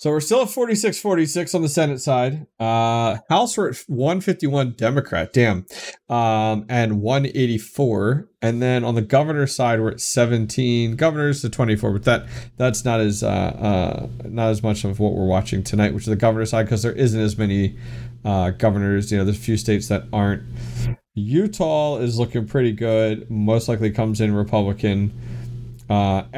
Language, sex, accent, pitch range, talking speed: English, male, American, 105-130 Hz, 175 wpm